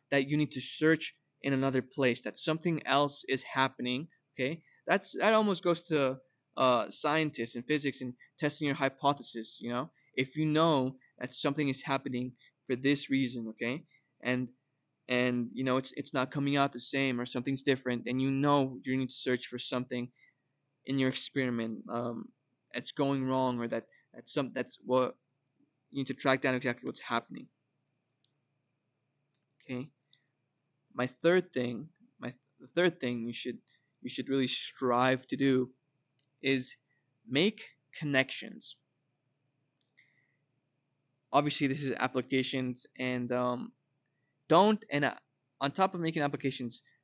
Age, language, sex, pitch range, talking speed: 20-39, English, male, 130-150 Hz, 150 wpm